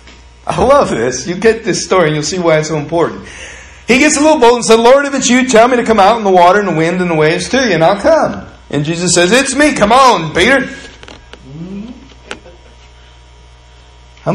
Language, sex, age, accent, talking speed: English, male, 50-69, American, 220 wpm